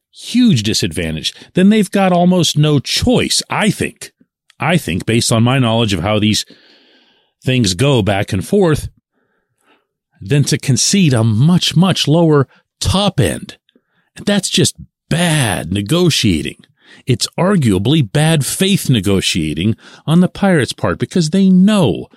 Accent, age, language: American, 50-69, English